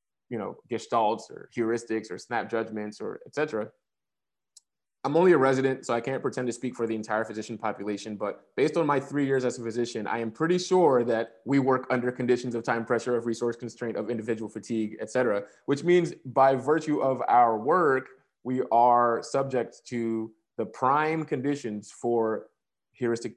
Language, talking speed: English, 180 wpm